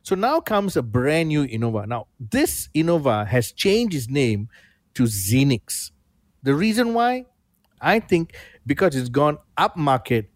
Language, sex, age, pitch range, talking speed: English, male, 50-69, 115-160 Hz, 145 wpm